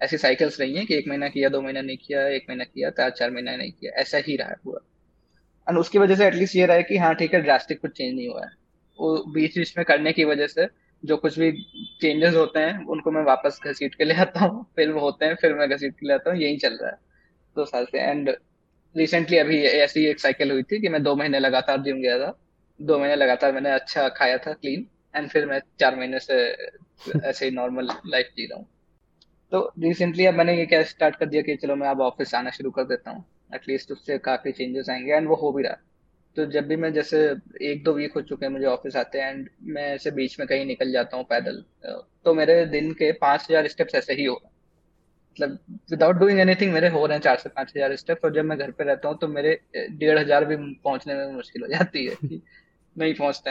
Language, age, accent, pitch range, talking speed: Hindi, 20-39, native, 135-165 Hz, 235 wpm